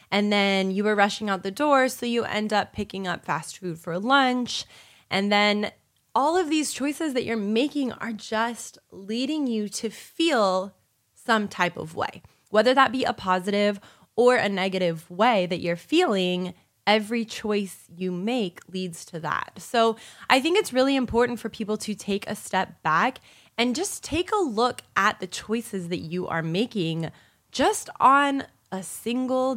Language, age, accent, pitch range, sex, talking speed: English, 20-39, American, 185-250 Hz, female, 175 wpm